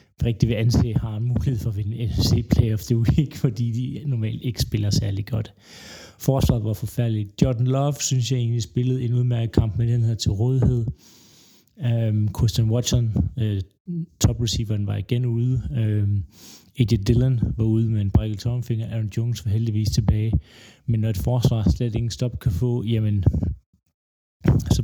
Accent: native